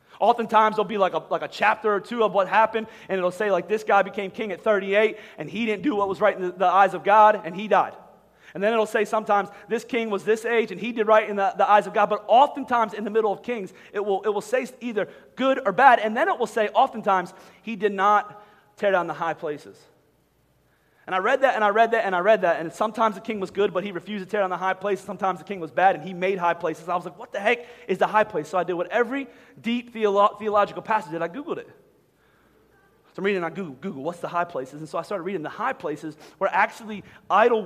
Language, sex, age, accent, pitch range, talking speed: English, male, 30-49, American, 175-220 Hz, 270 wpm